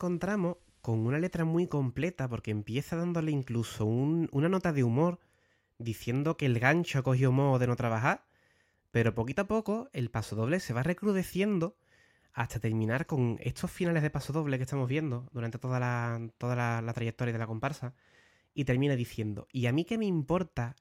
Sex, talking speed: male, 185 wpm